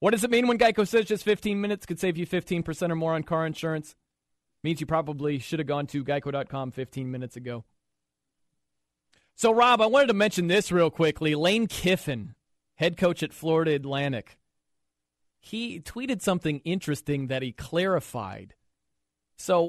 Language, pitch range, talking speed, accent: English, 120-175 Hz, 165 wpm, American